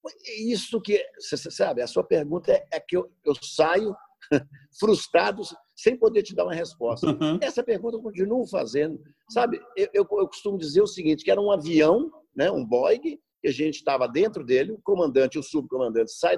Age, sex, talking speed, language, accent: 50-69, male, 185 wpm, Portuguese, Brazilian